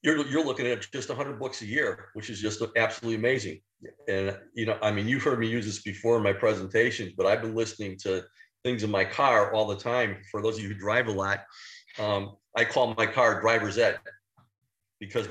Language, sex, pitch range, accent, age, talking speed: English, male, 105-125 Hz, American, 50-69, 220 wpm